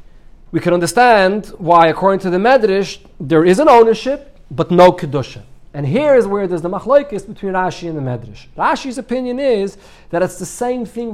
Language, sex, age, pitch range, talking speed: English, male, 40-59, 155-210 Hz, 190 wpm